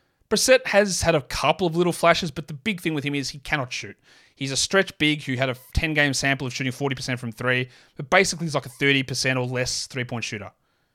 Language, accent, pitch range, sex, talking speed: English, Australian, 125-155 Hz, male, 230 wpm